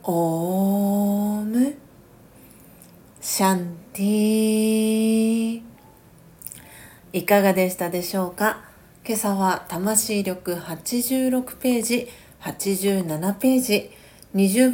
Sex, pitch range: female, 190-230 Hz